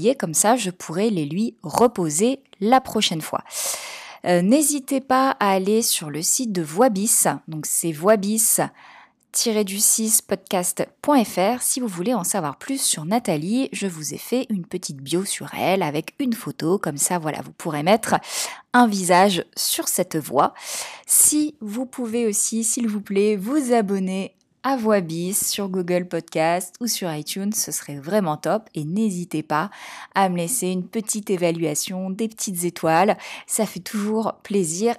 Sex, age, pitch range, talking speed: female, 20-39, 165-220 Hz, 160 wpm